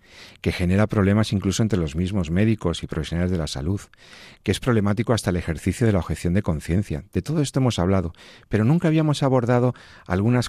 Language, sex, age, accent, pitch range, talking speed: Spanish, male, 50-69, Spanish, 90-115 Hz, 195 wpm